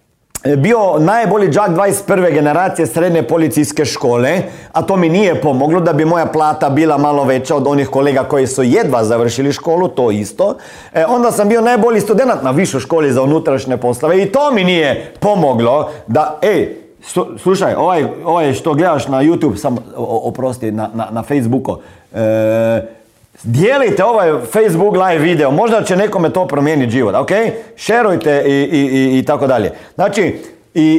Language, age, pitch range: Croatian, 40-59, 140-210 Hz